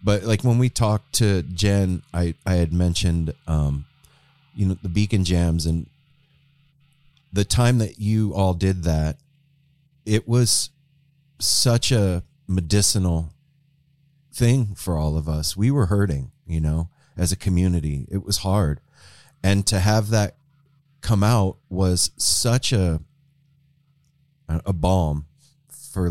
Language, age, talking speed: English, 30-49, 135 wpm